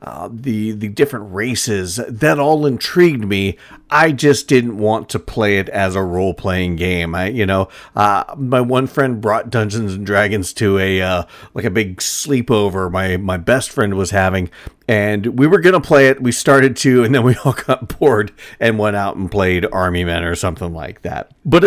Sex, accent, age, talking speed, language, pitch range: male, American, 40-59, 200 wpm, English, 95-130 Hz